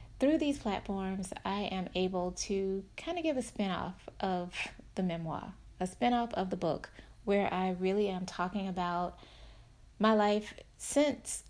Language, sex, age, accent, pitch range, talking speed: English, female, 30-49, American, 175-205 Hz, 160 wpm